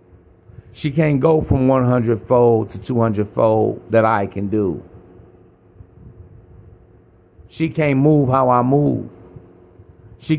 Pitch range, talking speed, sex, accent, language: 90-130 Hz, 115 wpm, male, American, English